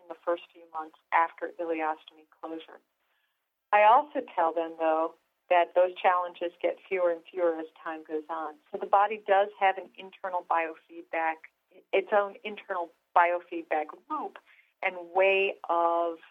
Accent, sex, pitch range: American, female, 160-200 Hz